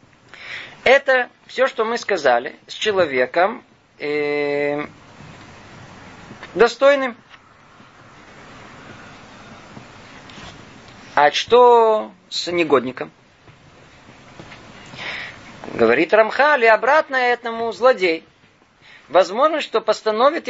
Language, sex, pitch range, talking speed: Russian, male, 160-245 Hz, 60 wpm